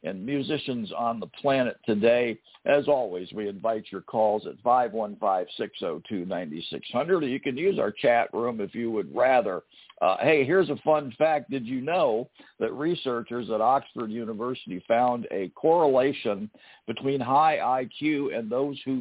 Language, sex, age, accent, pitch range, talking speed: English, male, 50-69, American, 105-155 Hz, 150 wpm